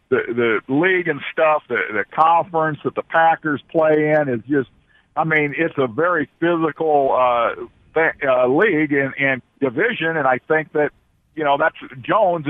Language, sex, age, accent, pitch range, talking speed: English, male, 50-69, American, 125-150 Hz, 175 wpm